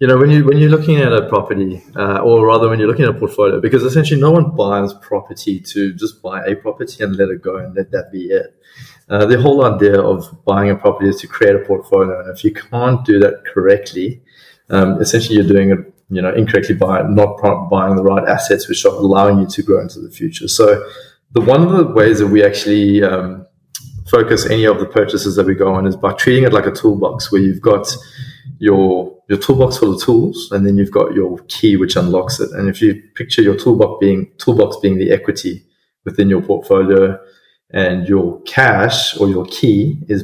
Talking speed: 220 wpm